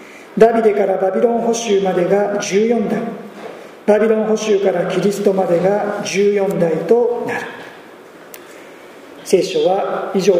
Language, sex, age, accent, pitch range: Japanese, male, 40-59, native, 190-220 Hz